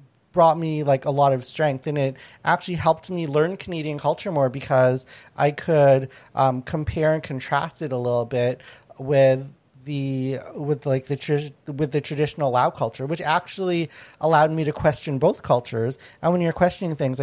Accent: American